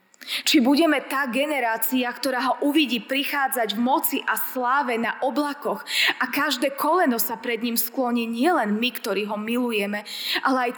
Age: 20-39